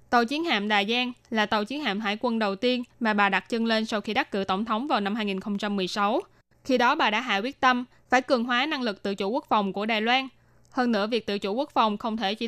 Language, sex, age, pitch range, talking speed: Vietnamese, female, 10-29, 210-255 Hz, 270 wpm